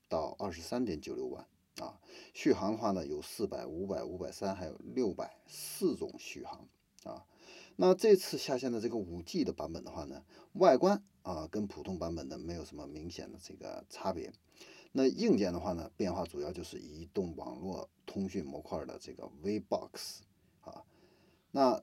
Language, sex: Chinese, male